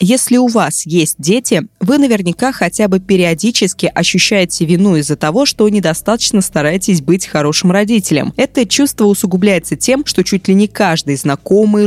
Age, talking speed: 20-39, 150 wpm